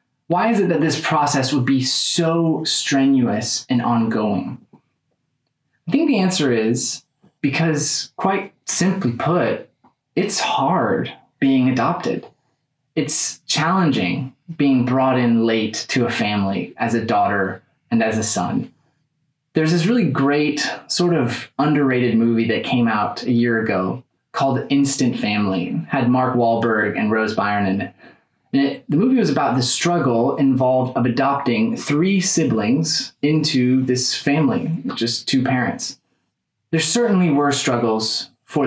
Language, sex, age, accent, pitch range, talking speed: English, male, 20-39, American, 115-150 Hz, 135 wpm